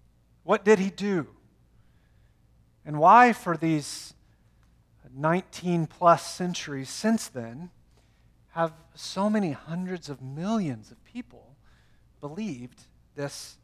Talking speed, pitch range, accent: 100 wpm, 140-190 Hz, American